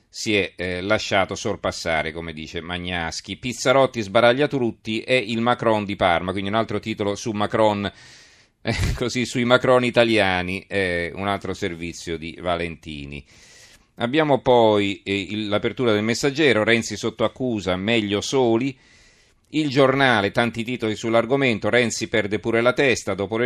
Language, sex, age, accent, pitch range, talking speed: Italian, male, 40-59, native, 100-120 Hz, 135 wpm